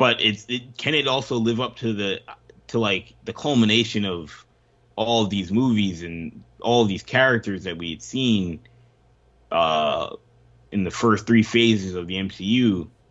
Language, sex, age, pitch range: English, male, 20-39, 90-120 Hz